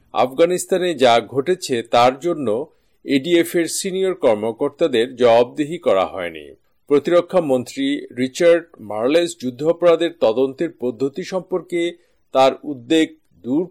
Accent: native